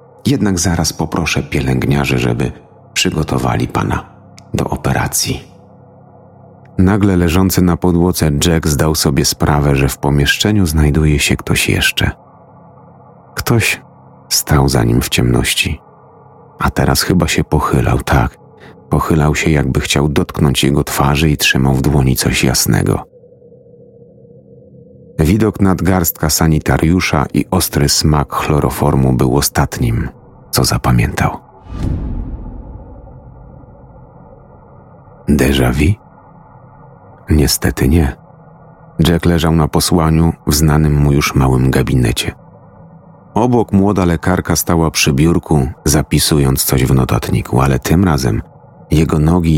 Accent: native